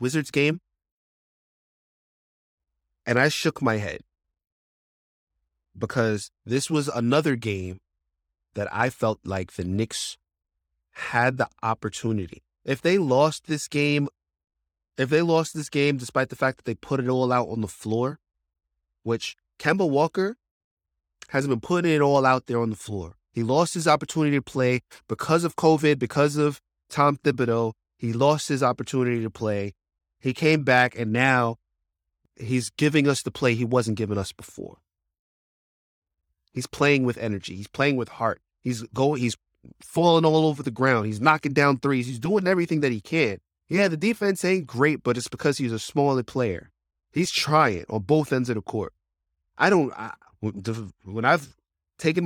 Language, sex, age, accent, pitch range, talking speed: English, male, 20-39, American, 95-145 Hz, 165 wpm